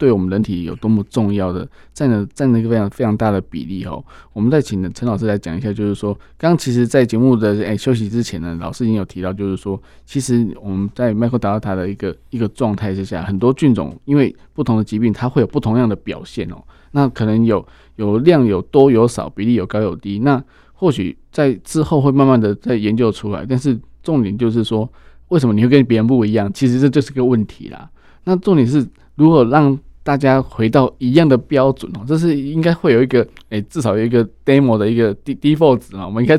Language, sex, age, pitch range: Chinese, male, 20-39, 105-135 Hz